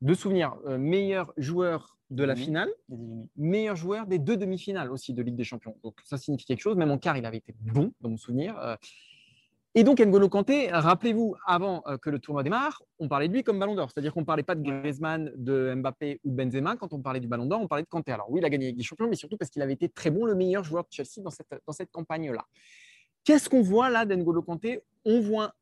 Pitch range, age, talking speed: 145-215 Hz, 20-39, 245 wpm